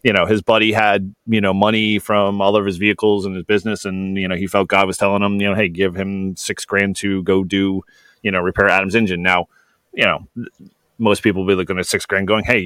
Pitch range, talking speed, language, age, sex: 90-105 Hz, 250 wpm, English, 30-49, male